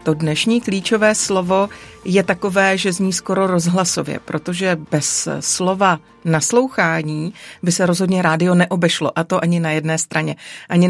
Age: 40-59